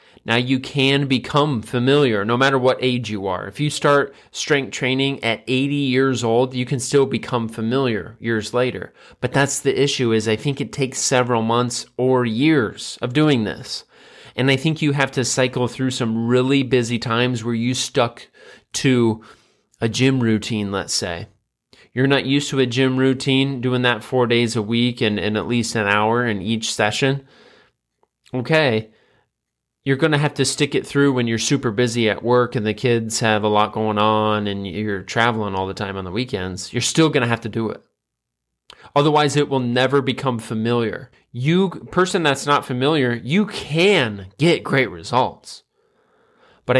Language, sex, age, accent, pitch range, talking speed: English, male, 20-39, American, 115-140 Hz, 185 wpm